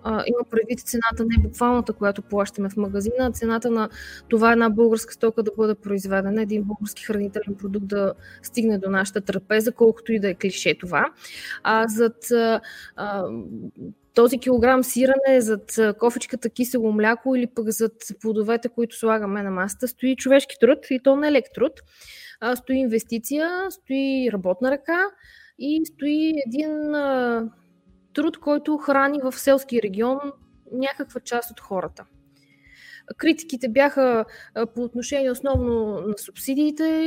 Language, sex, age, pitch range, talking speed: Bulgarian, female, 20-39, 210-265 Hz, 140 wpm